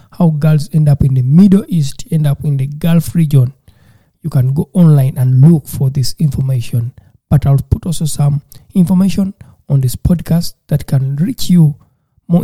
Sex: male